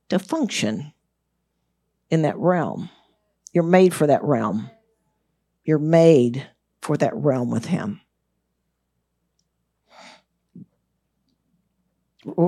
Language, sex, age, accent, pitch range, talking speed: English, female, 50-69, American, 165-195 Hz, 85 wpm